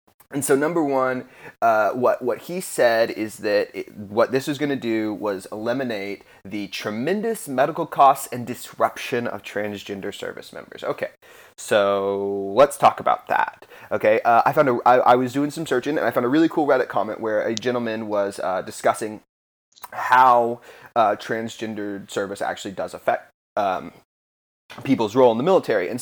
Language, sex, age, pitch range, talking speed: English, male, 30-49, 110-150 Hz, 170 wpm